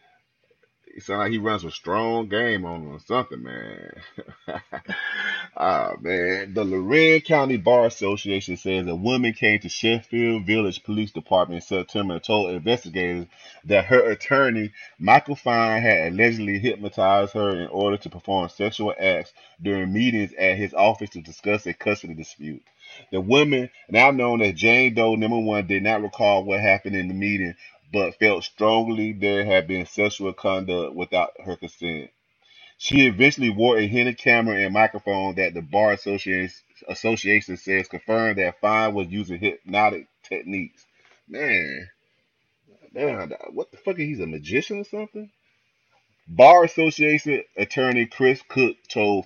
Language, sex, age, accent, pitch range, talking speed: English, male, 30-49, American, 95-115 Hz, 150 wpm